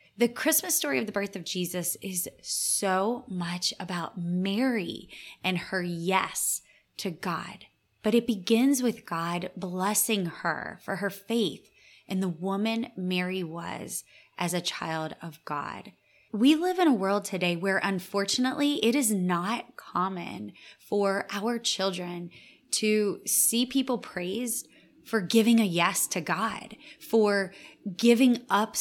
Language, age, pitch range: English, 20-39, 180-225 Hz